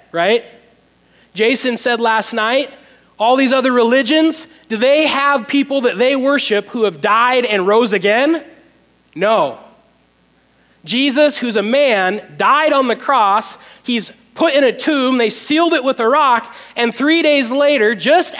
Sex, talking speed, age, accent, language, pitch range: male, 155 wpm, 30-49, American, English, 225-300 Hz